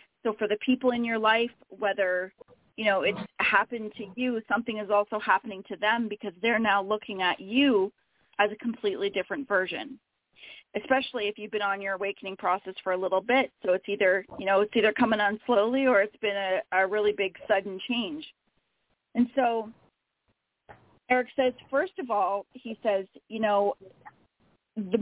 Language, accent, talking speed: English, American, 175 wpm